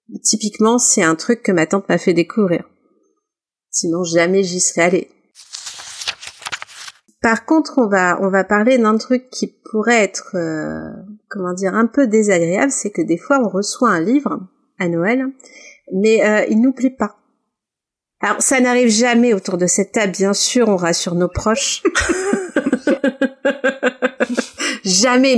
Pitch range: 200-260 Hz